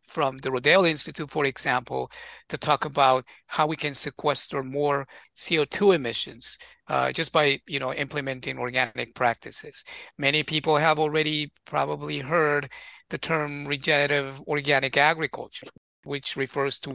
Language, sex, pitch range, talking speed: English, male, 140-165 Hz, 125 wpm